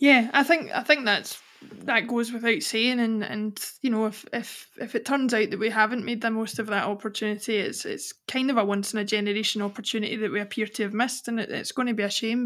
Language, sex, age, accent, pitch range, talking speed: English, female, 20-39, British, 215-255 Hz, 250 wpm